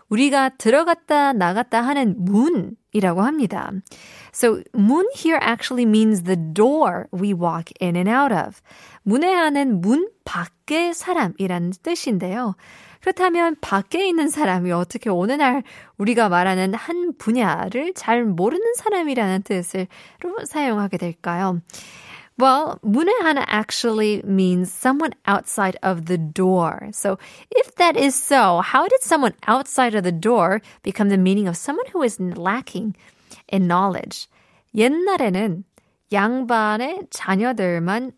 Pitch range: 190-275 Hz